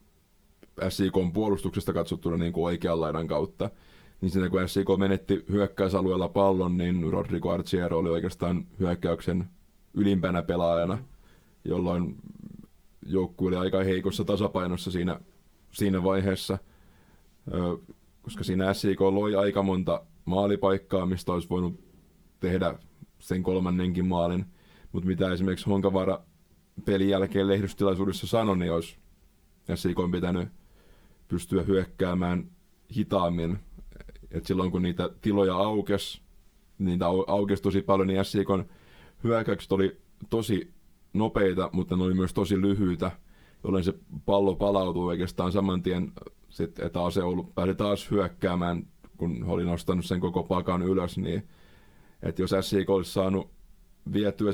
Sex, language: male, Finnish